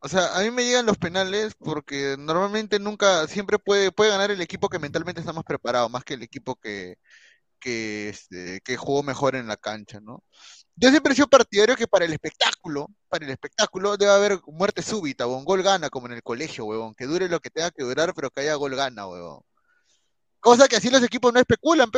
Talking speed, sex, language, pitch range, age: 220 wpm, male, Spanish, 140-205 Hz, 20-39